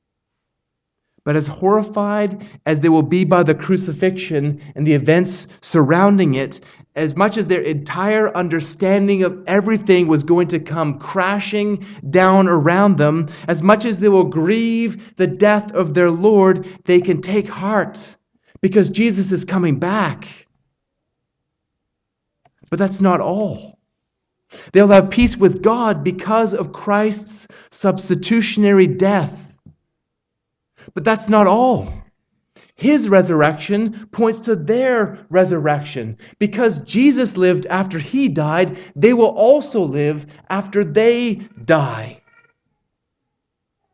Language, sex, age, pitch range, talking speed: English, male, 30-49, 170-210 Hz, 120 wpm